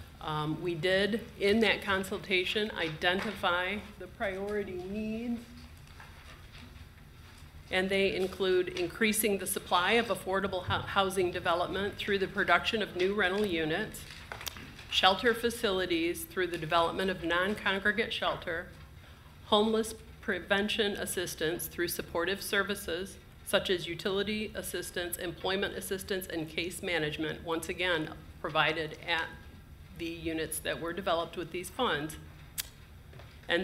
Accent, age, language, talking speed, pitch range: American, 40-59, English, 110 wpm, 155-190 Hz